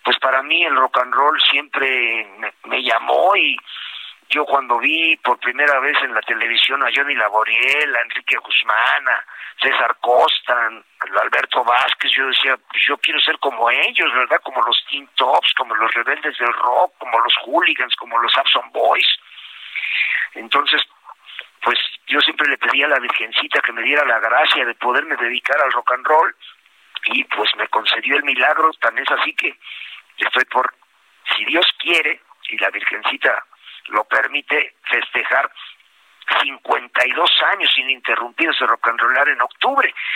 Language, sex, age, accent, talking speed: Spanish, male, 50-69, Mexican, 165 wpm